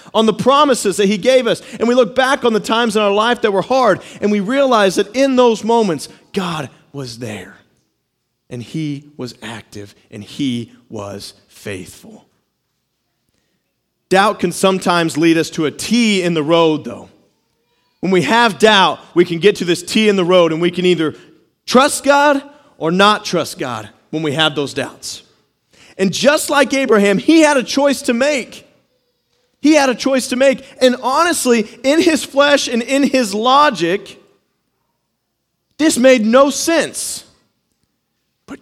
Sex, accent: male, American